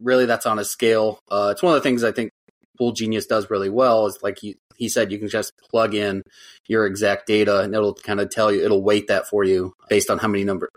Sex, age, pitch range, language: male, 30-49, 105-125 Hz, English